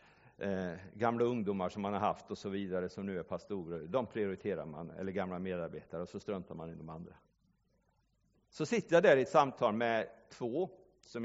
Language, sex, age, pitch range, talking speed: Swedish, male, 50-69, 95-125 Hz, 195 wpm